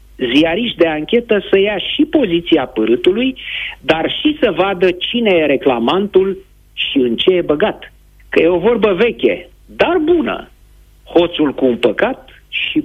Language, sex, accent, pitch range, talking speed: Romanian, male, native, 145-235 Hz, 150 wpm